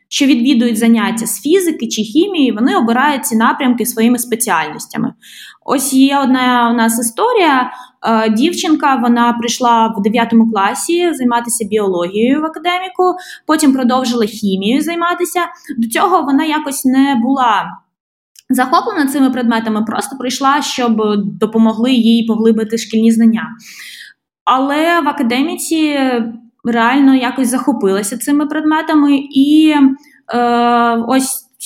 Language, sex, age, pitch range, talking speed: Ukrainian, female, 20-39, 230-280 Hz, 115 wpm